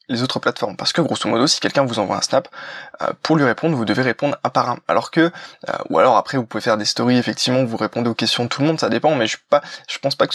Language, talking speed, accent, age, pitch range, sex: French, 300 wpm, French, 20-39, 120-155 Hz, male